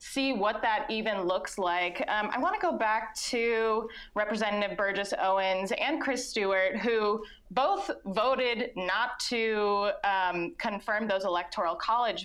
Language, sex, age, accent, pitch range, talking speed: English, female, 20-39, American, 190-240 Hz, 140 wpm